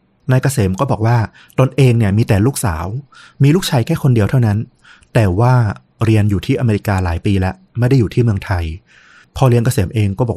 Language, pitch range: Thai, 100-125 Hz